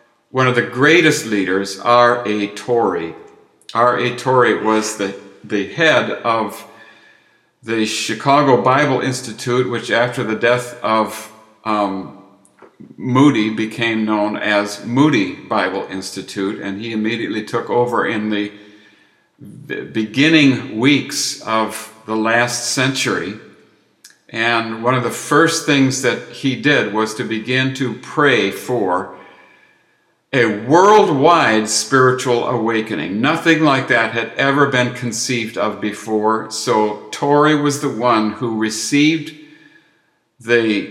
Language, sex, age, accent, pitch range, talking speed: English, male, 60-79, American, 105-130 Hz, 115 wpm